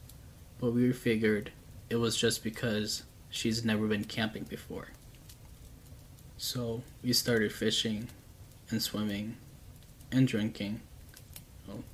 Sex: male